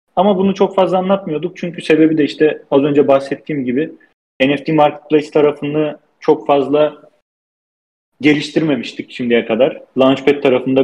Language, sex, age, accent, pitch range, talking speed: Turkish, male, 40-59, native, 135-160 Hz, 125 wpm